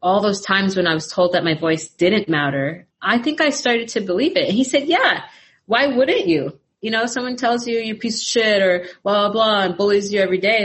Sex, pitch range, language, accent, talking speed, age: female, 160-210 Hz, English, American, 250 wpm, 30-49